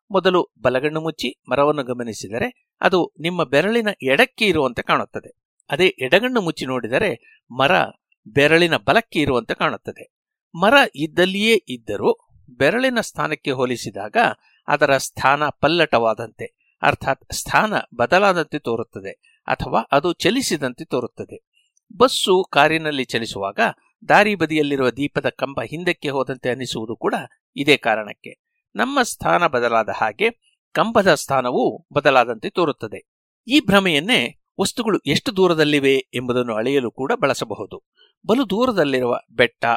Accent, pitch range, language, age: native, 125-200 Hz, Kannada, 60-79